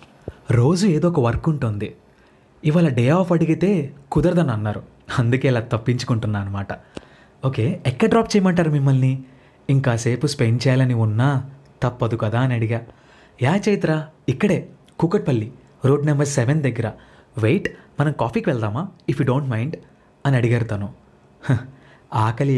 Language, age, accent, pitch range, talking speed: Telugu, 30-49, native, 115-155 Hz, 120 wpm